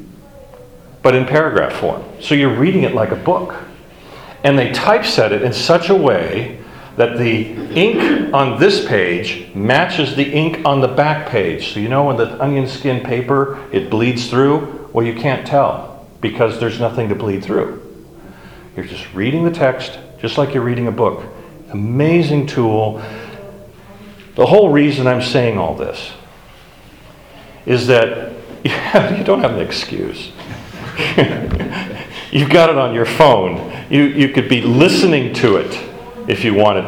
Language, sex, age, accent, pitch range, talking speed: English, male, 40-59, American, 115-145 Hz, 160 wpm